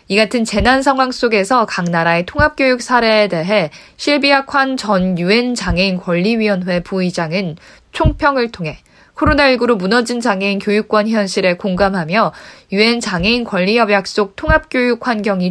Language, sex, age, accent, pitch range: Korean, female, 20-39, native, 185-255 Hz